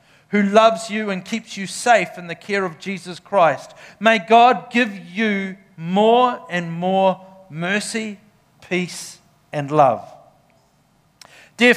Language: English